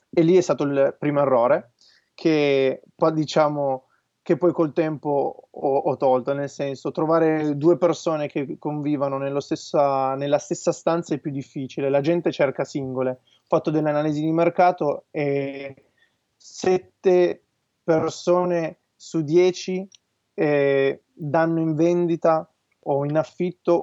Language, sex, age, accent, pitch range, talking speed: Italian, male, 30-49, native, 135-165 Hz, 130 wpm